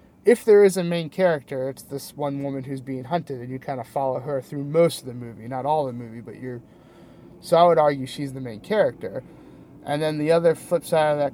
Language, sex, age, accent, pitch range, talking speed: English, male, 30-49, American, 135-185 Hz, 245 wpm